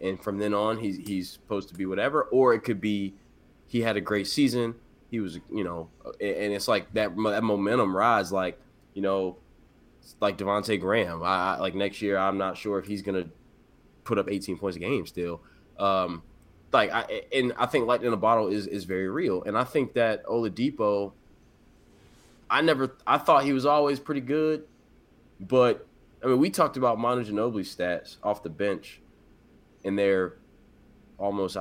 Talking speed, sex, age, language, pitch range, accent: 185 wpm, male, 20-39, English, 95-115 Hz, American